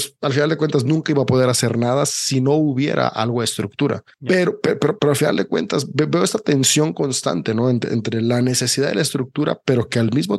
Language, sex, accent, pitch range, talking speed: English, male, Mexican, 120-145 Hz, 235 wpm